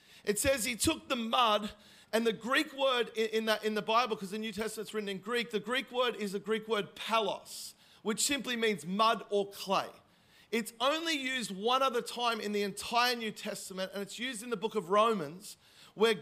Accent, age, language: Australian, 40-59, English